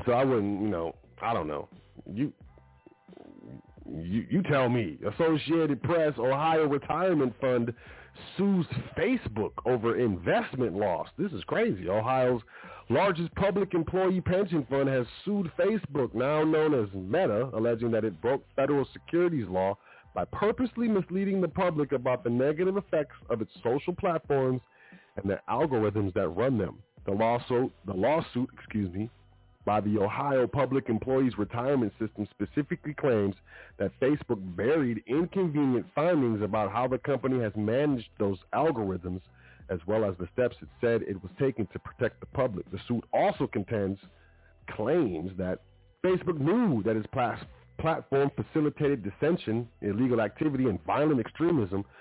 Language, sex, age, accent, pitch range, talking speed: English, male, 40-59, American, 100-150 Hz, 140 wpm